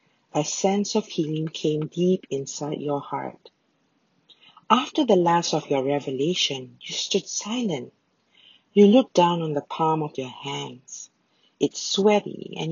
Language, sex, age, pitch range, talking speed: English, female, 50-69, 155-240 Hz, 140 wpm